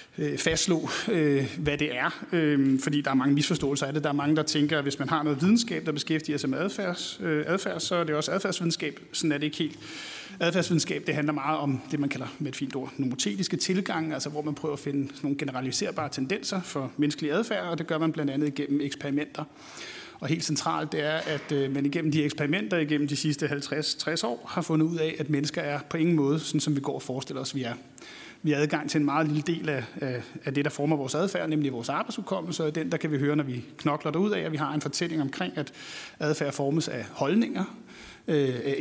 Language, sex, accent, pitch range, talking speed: Danish, male, native, 140-160 Hz, 235 wpm